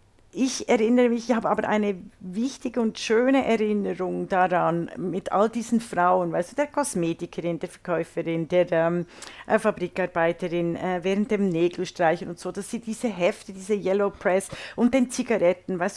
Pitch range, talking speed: 180-230 Hz, 160 wpm